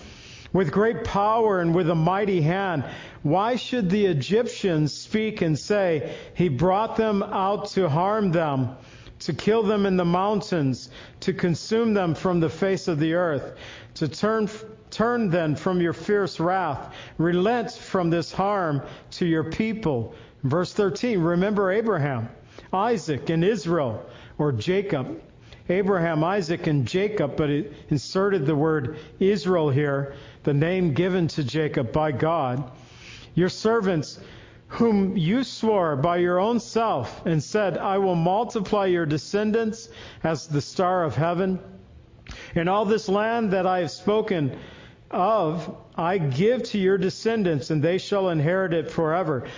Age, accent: 50-69, American